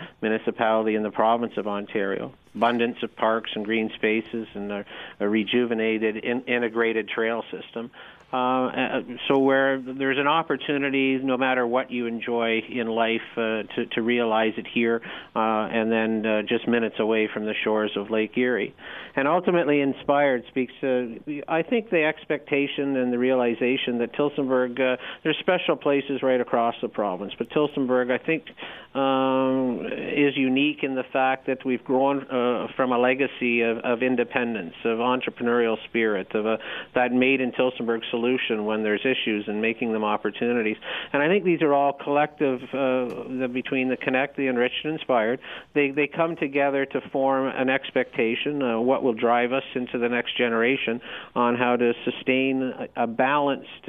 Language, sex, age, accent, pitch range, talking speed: English, male, 50-69, American, 115-135 Hz, 165 wpm